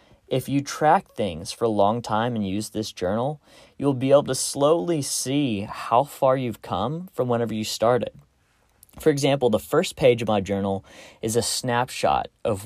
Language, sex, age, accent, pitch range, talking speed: English, male, 20-39, American, 100-125 Hz, 180 wpm